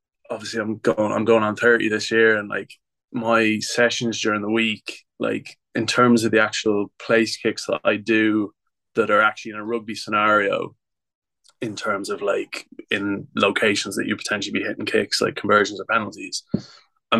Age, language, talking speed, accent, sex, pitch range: 20-39, English, 180 wpm, Irish, male, 100-115 Hz